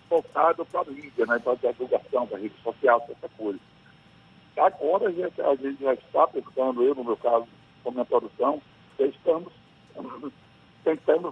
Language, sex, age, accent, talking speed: Portuguese, male, 60-79, Brazilian, 170 wpm